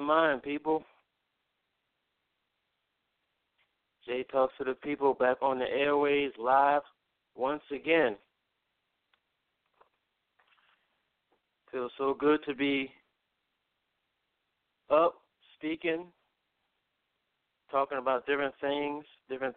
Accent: American